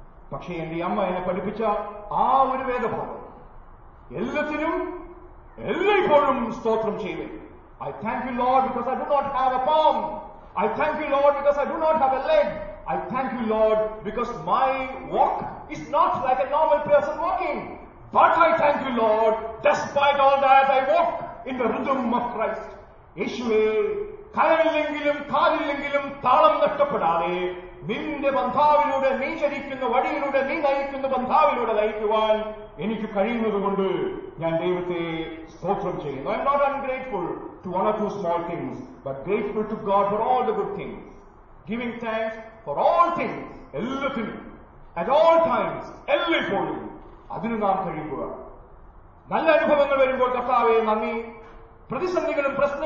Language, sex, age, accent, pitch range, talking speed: English, male, 40-59, Indian, 215-290 Hz, 90 wpm